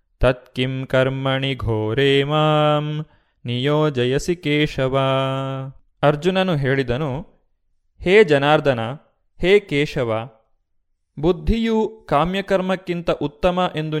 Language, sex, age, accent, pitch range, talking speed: Kannada, male, 20-39, native, 135-170 Hz, 70 wpm